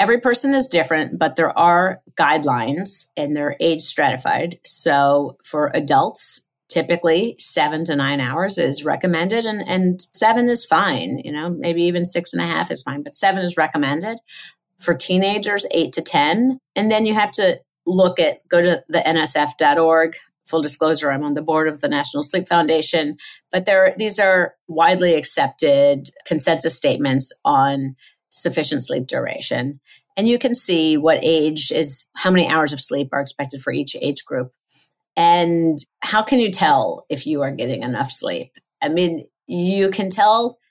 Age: 30-49